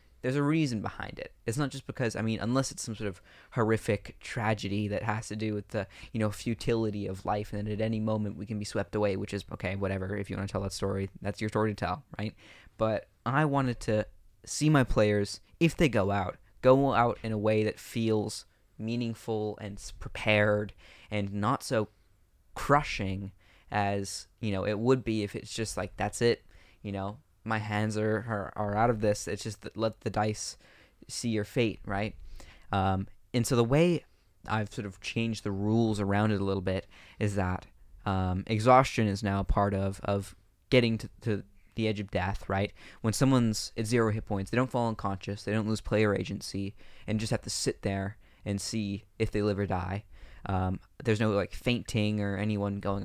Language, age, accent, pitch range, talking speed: English, 20-39, American, 100-110 Hz, 200 wpm